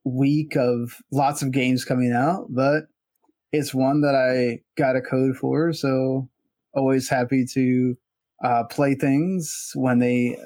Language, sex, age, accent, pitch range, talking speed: English, male, 20-39, American, 130-155 Hz, 145 wpm